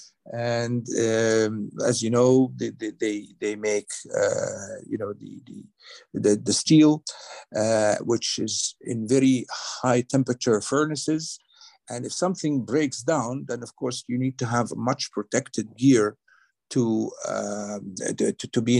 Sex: male